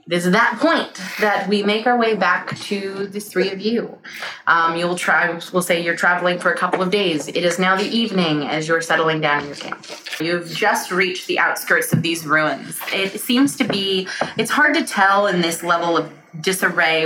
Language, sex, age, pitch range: English, female, 20-39, 165-200 Hz